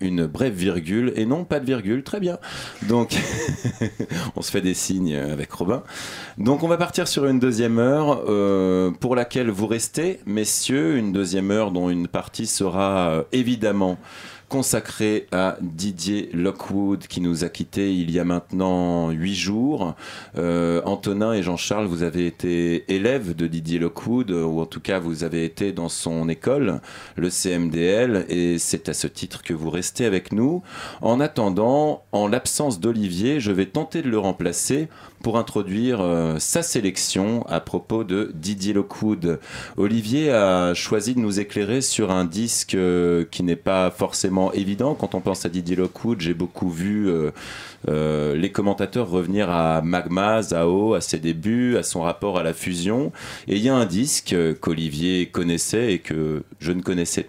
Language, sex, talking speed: French, male, 170 wpm